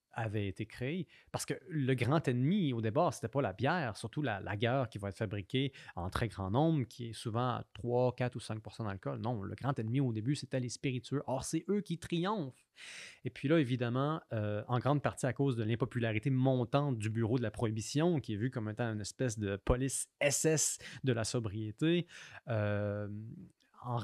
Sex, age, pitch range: male, 30-49, 115-150 Hz